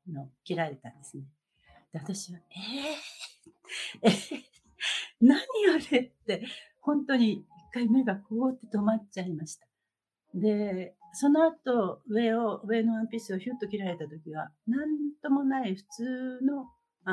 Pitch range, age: 175-255 Hz, 60-79